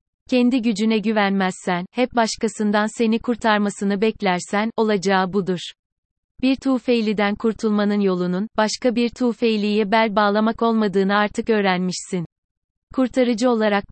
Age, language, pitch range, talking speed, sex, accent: 30-49, Turkish, 195-230 Hz, 105 wpm, female, native